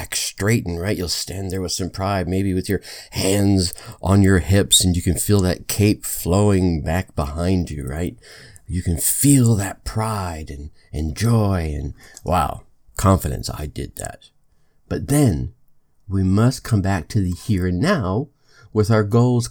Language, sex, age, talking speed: English, male, 50-69, 165 wpm